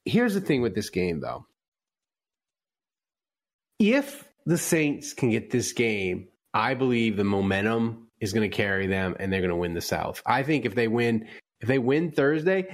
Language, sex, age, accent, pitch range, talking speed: English, male, 30-49, American, 105-165 Hz, 185 wpm